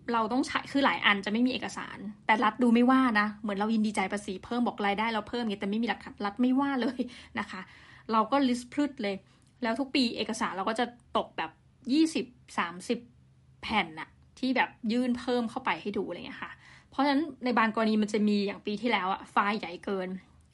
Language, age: Thai, 20-39